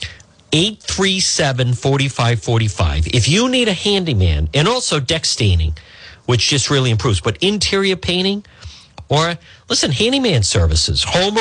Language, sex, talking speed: English, male, 120 wpm